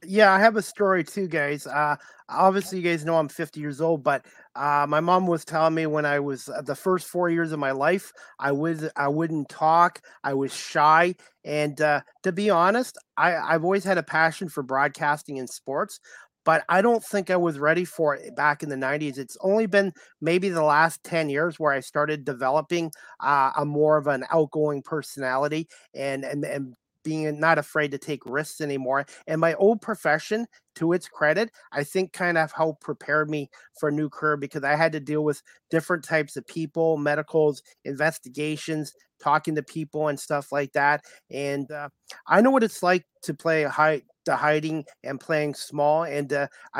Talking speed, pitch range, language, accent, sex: 195 wpm, 145-165 Hz, English, American, male